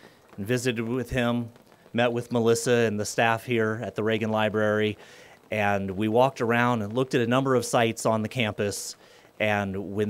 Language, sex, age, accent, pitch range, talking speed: English, male, 30-49, American, 105-125 Hz, 180 wpm